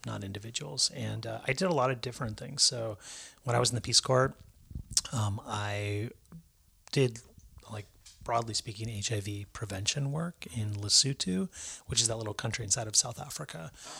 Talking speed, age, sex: 165 wpm, 30-49, male